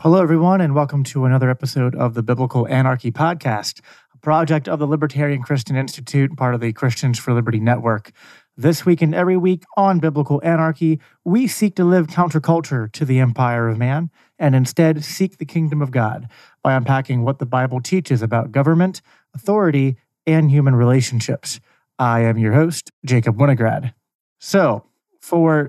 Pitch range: 120-155 Hz